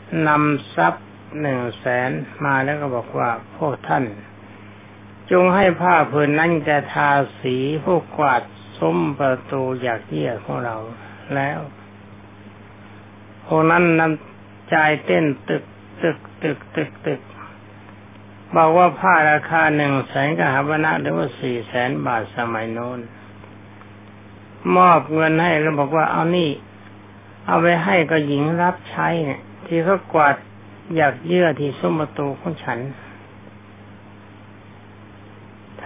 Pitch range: 105-155 Hz